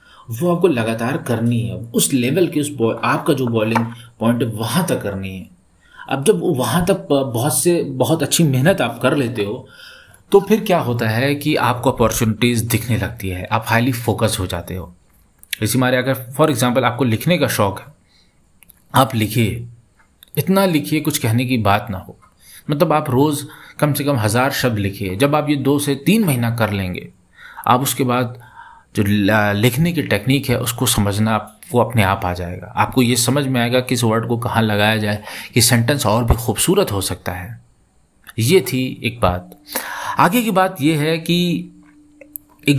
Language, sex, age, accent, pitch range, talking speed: Hindi, male, 30-49, native, 110-150 Hz, 185 wpm